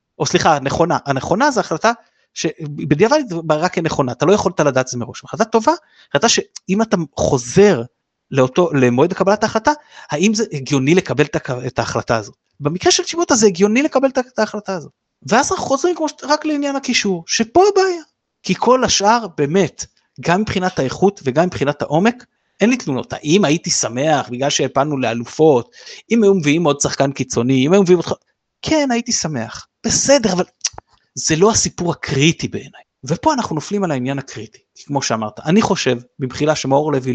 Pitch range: 130-210 Hz